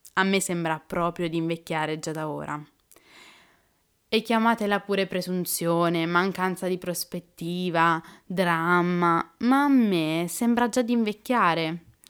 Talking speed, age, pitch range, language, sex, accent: 120 wpm, 20-39, 165-195 Hz, Italian, female, native